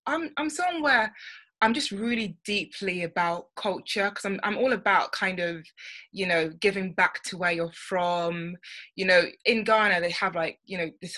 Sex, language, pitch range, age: female, English, 170-200 Hz, 20-39